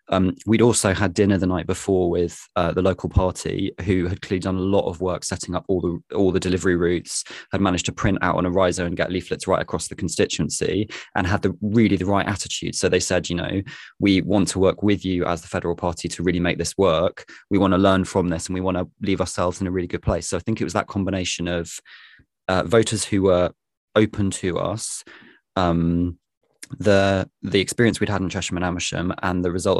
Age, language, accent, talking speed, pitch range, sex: 20-39, English, British, 235 wpm, 90-100 Hz, male